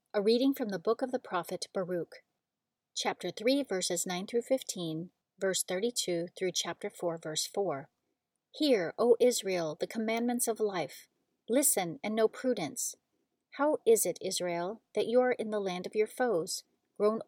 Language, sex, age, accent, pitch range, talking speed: English, female, 40-59, American, 180-235 Hz, 165 wpm